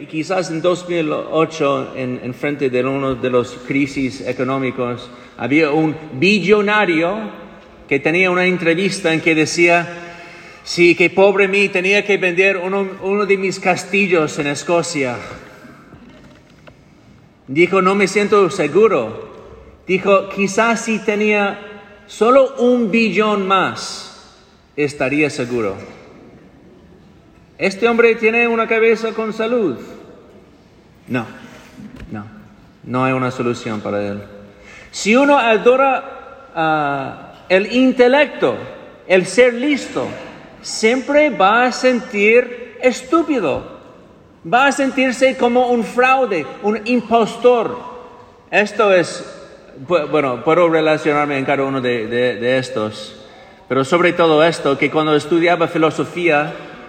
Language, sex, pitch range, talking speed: English, male, 145-220 Hz, 115 wpm